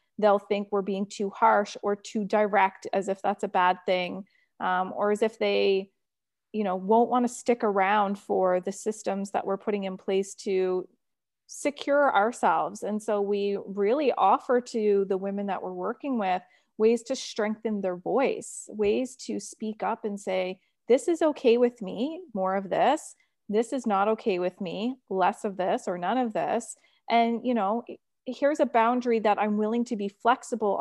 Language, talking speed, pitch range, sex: English, 185 wpm, 190-230 Hz, female